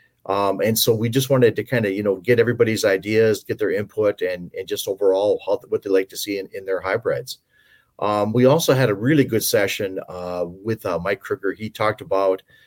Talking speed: 225 wpm